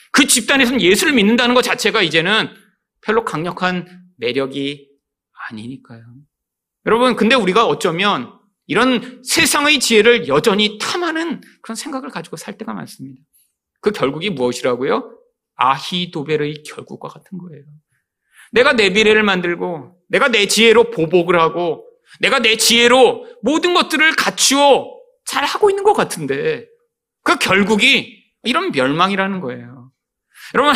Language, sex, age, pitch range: Korean, male, 40-59, 175-275 Hz